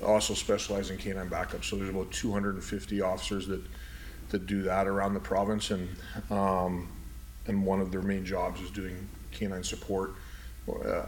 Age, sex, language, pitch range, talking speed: 40-59, male, English, 100-125 Hz, 160 wpm